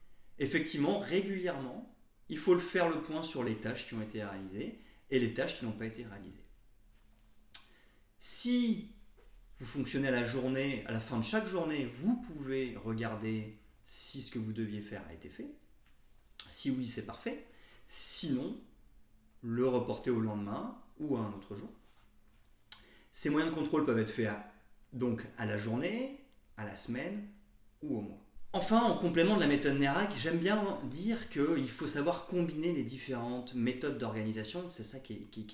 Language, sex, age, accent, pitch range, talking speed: French, male, 30-49, French, 110-160 Hz, 175 wpm